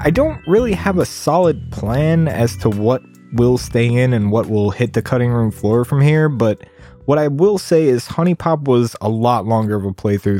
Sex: male